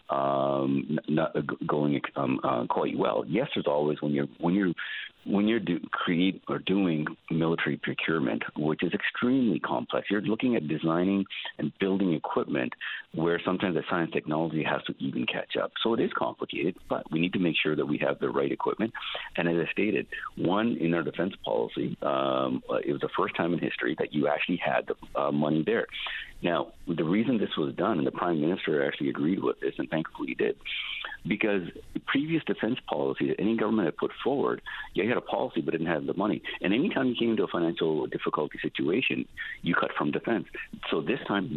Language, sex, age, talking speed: English, male, 50-69, 200 wpm